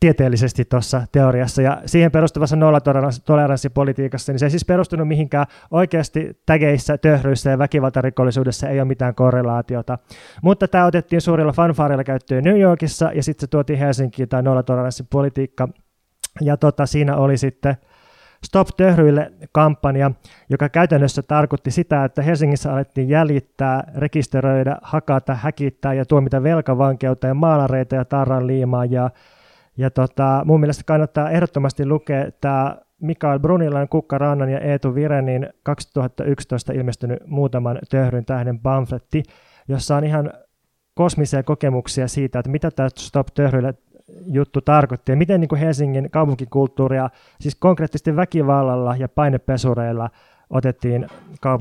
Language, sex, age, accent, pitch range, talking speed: Finnish, male, 20-39, native, 130-155 Hz, 130 wpm